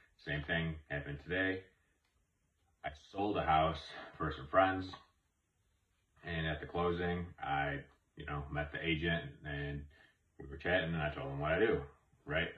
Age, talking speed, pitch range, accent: 30-49, 155 wpm, 70-85 Hz, American